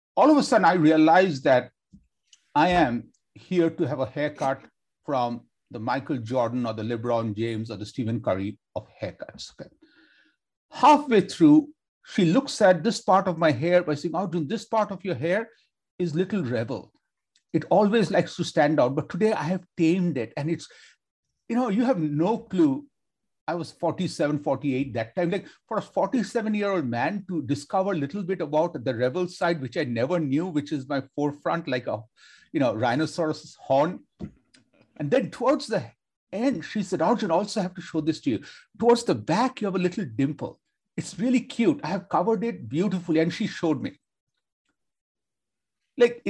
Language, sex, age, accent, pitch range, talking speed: English, male, 60-79, Indian, 150-205 Hz, 185 wpm